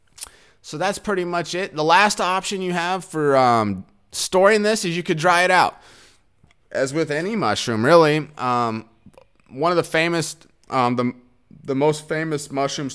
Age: 20-39